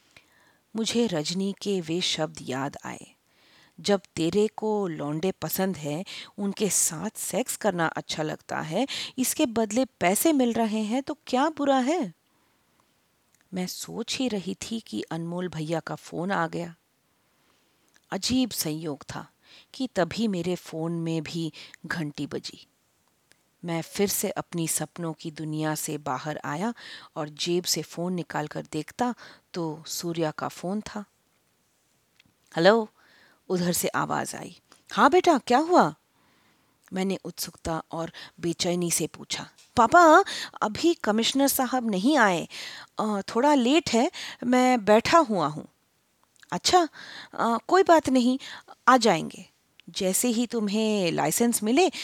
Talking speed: 125 wpm